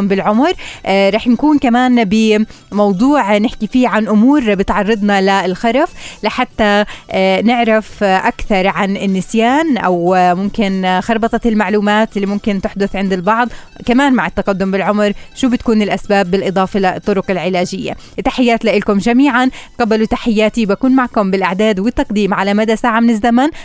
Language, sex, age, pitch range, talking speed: Arabic, female, 20-39, 185-230 Hz, 135 wpm